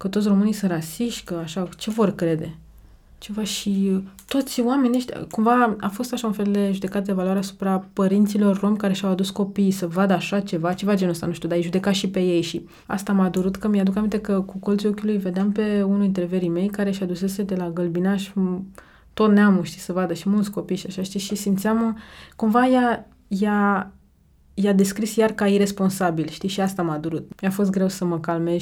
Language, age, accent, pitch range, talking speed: Romanian, 20-39, native, 175-200 Hz, 210 wpm